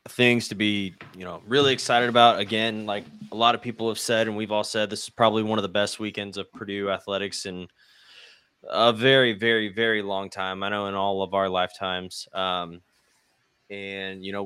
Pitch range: 100-115 Hz